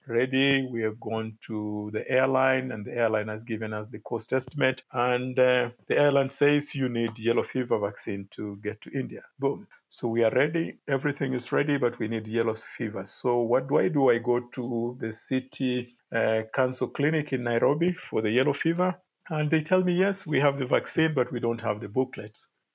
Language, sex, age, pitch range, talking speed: English, male, 50-69, 115-145 Hz, 205 wpm